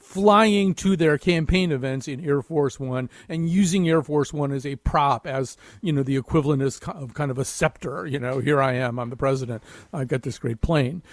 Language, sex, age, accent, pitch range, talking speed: English, male, 50-69, American, 135-175 Hz, 215 wpm